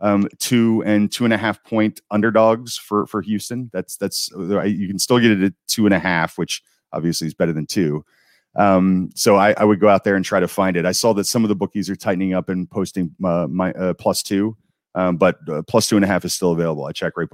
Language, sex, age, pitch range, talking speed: English, male, 30-49, 90-110 Hz, 255 wpm